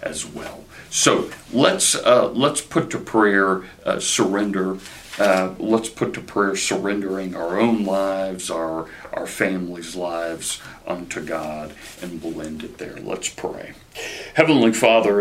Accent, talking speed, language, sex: American, 140 wpm, English, male